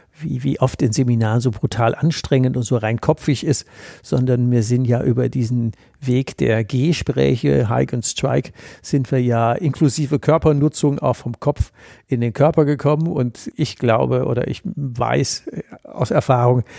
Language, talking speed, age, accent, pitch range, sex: German, 155 wpm, 60-79, German, 120-145 Hz, male